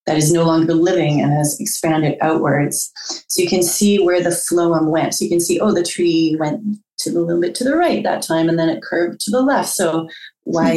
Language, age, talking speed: English, 30-49, 240 wpm